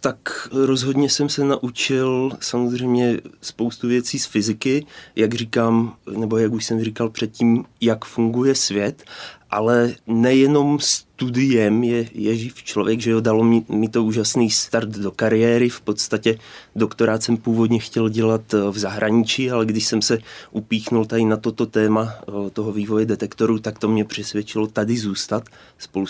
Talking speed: 155 wpm